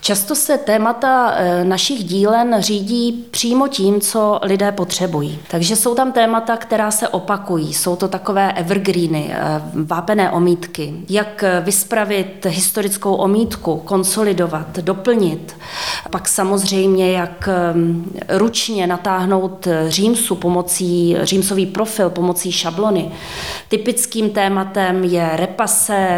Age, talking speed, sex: 20-39, 105 wpm, female